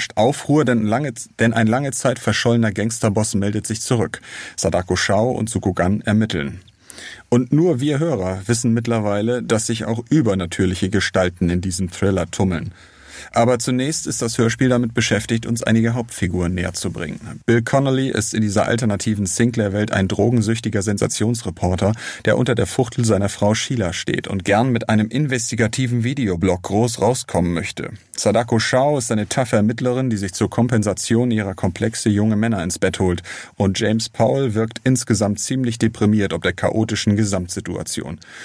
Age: 40-59